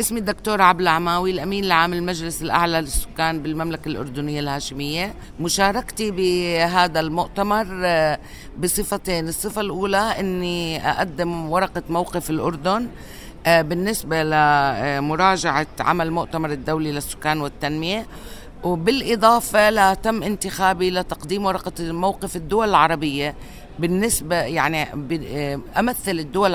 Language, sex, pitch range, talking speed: Arabic, female, 145-180 Hz, 95 wpm